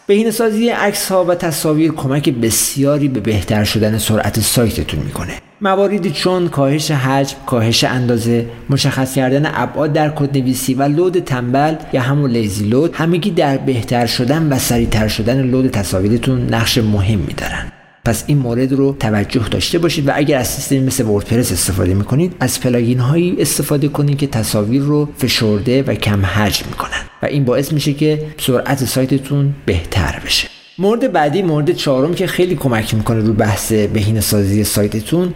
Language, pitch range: Persian, 115-155 Hz